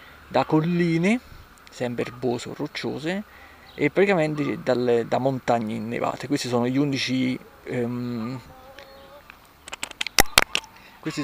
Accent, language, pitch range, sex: native, Italian, 125-155 Hz, male